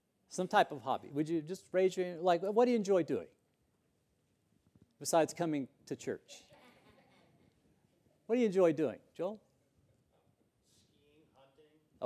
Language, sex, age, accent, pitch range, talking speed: English, male, 50-69, American, 160-230 Hz, 140 wpm